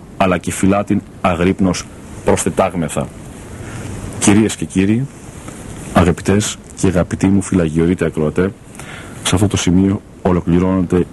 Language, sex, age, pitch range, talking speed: Greek, male, 50-69, 85-100 Hz, 115 wpm